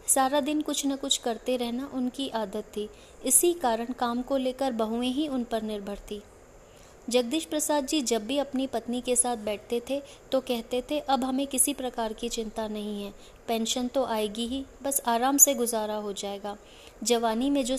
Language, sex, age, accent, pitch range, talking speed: Hindi, female, 20-39, native, 225-260 Hz, 190 wpm